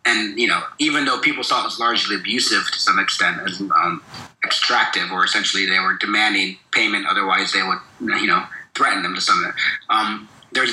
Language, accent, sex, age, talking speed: English, American, male, 30-49, 195 wpm